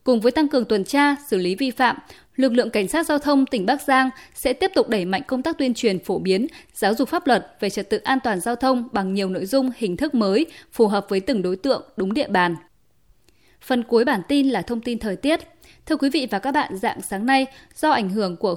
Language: Vietnamese